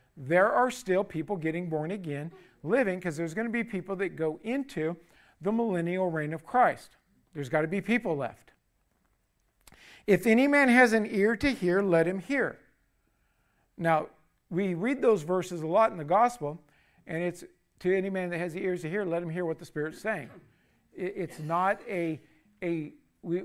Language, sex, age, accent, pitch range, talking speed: English, male, 50-69, American, 150-200 Hz, 185 wpm